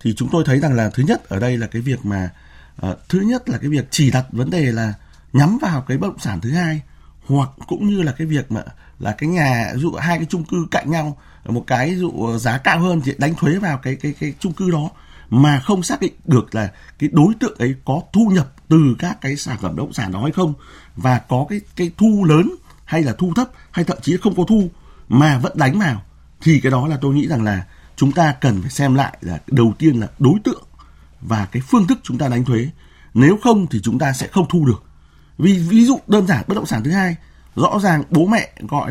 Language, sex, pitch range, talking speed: Vietnamese, male, 120-175 Hz, 250 wpm